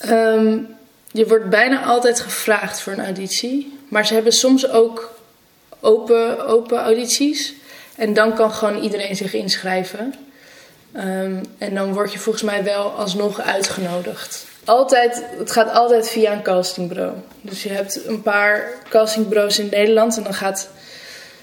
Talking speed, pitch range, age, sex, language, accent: 145 wpm, 190-225 Hz, 20-39, female, Dutch, Dutch